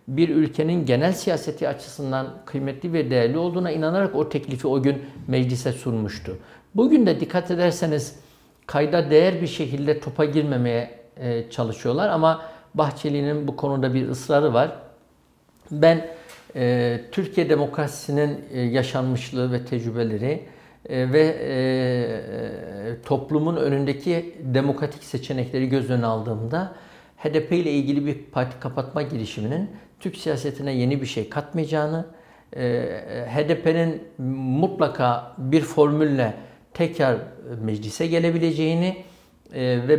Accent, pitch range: native, 130-160 Hz